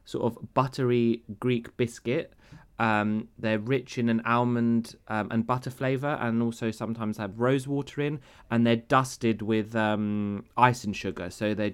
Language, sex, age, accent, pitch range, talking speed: Greek, male, 20-39, British, 100-120 Hz, 165 wpm